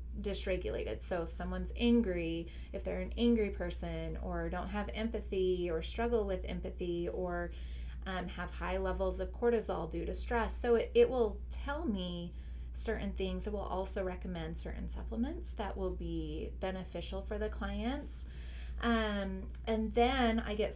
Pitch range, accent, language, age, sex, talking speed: 160-210 Hz, American, English, 30-49, female, 155 wpm